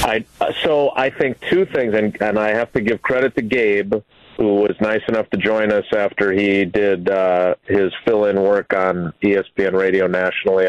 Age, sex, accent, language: 40-59, male, American, English